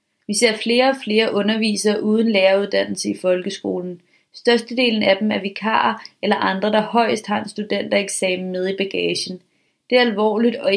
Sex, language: female, Danish